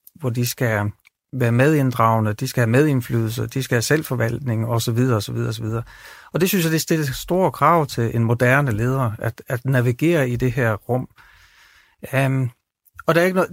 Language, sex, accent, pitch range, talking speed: Danish, male, native, 115-150 Hz, 185 wpm